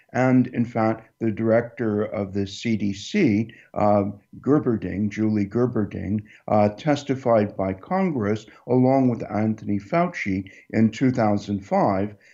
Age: 60-79